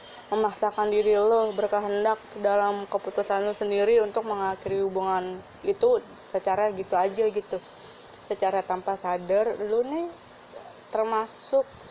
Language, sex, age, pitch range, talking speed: Indonesian, female, 20-39, 190-215 Hz, 110 wpm